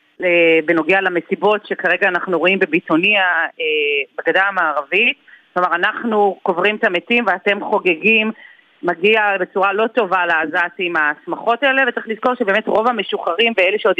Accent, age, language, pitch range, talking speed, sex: native, 30-49, Hebrew, 180-230 Hz, 125 wpm, female